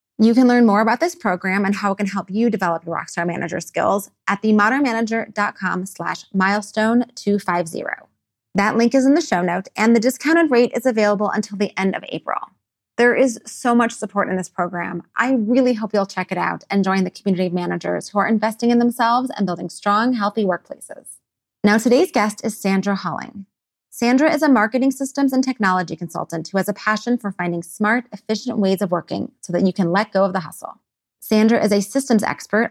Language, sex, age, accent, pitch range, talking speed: English, female, 30-49, American, 185-230 Hz, 200 wpm